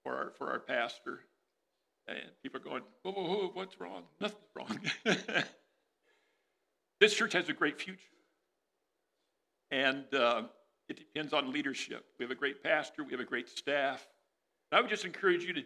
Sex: male